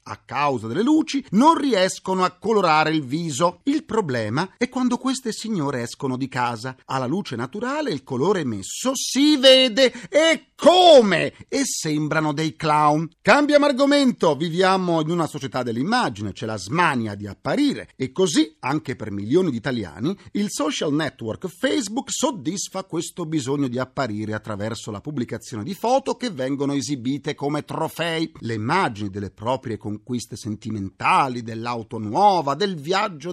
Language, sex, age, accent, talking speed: Italian, male, 40-59, native, 150 wpm